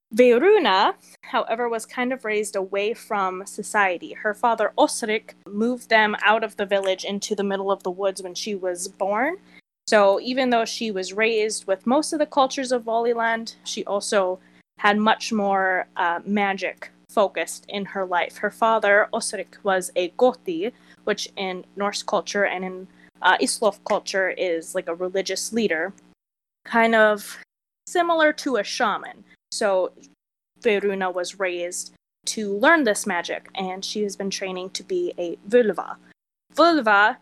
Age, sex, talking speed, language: 20-39, female, 155 wpm, English